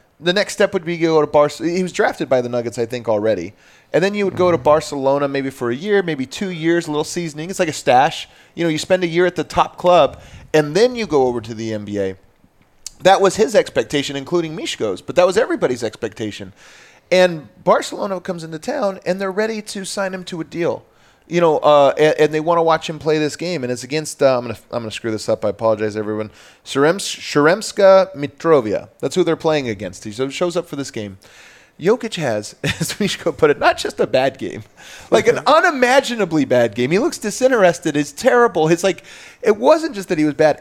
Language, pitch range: English, 140-195 Hz